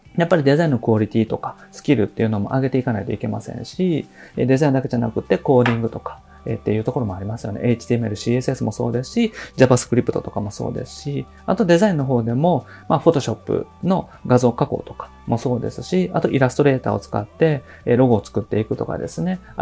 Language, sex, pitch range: Japanese, male, 115-165 Hz